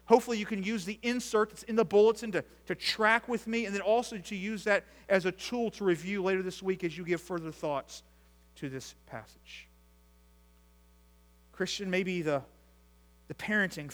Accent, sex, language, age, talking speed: American, male, English, 40-59, 180 wpm